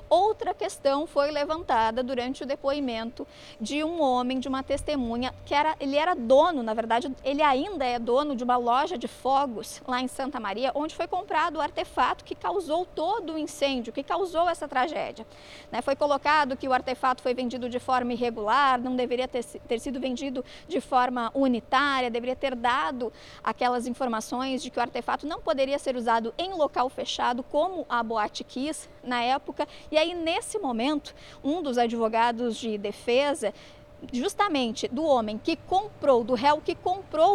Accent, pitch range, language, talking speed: Brazilian, 250-315 Hz, Portuguese, 175 wpm